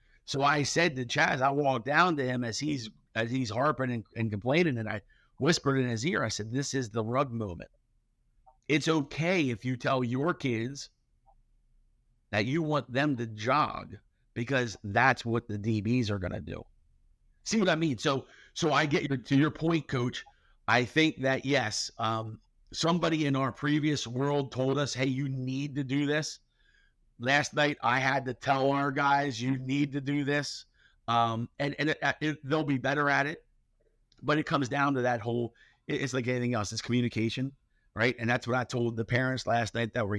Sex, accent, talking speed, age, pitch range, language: male, American, 200 wpm, 50-69, 115-140 Hz, English